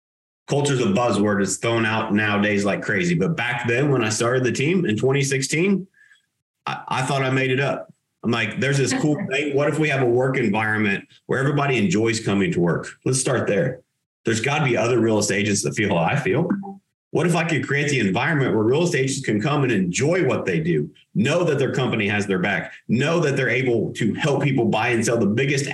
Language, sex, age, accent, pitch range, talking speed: English, male, 30-49, American, 115-160 Hz, 230 wpm